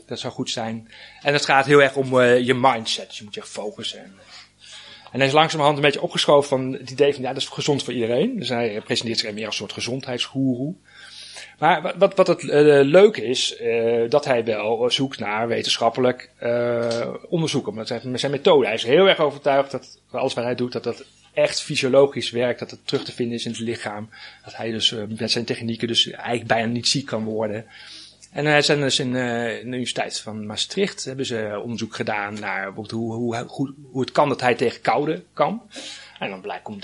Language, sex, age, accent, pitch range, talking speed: Dutch, male, 30-49, Dutch, 115-140 Hz, 200 wpm